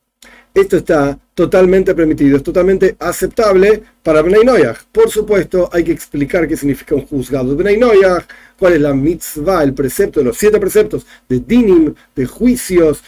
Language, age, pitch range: Spanish, 40-59, 150-215 Hz